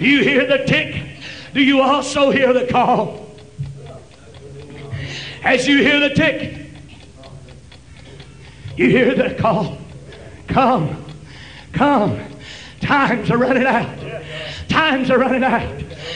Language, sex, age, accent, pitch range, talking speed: English, male, 60-79, American, 270-305 Hz, 110 wpm